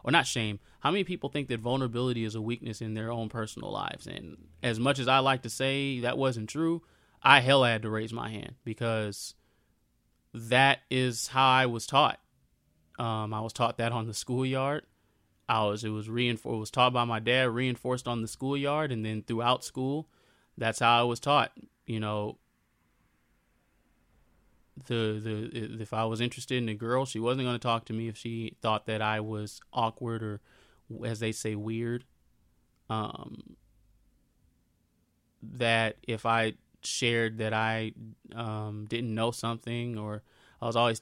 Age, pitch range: 20-39, 110-125 Hz